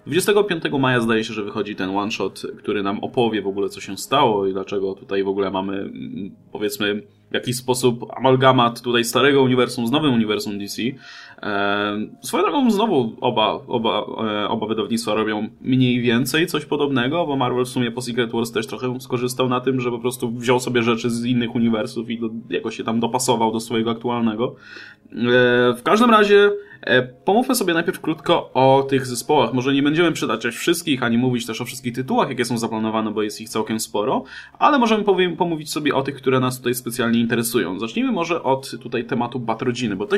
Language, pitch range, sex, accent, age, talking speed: Polish, 110-130 Hz, male, native, 20-39, 185 wpm